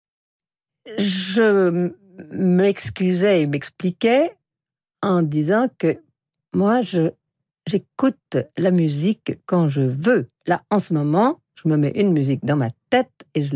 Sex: female